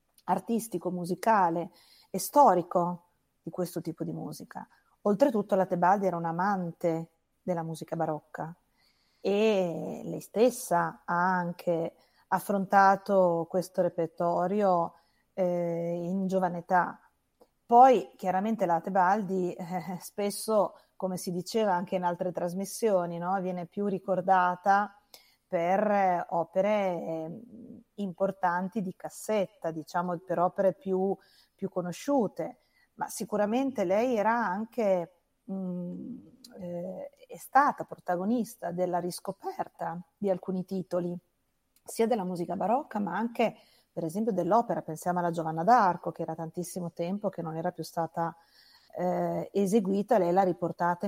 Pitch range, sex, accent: 175-200 Hz, female, native